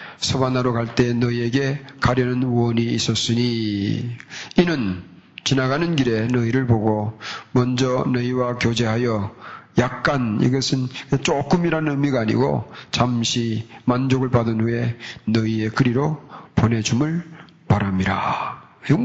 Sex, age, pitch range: male, 40-59, 120-170 Hz